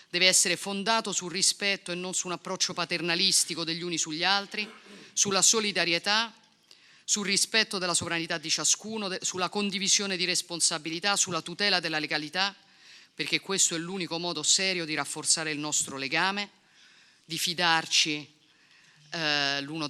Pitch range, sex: 160-190 Hz, female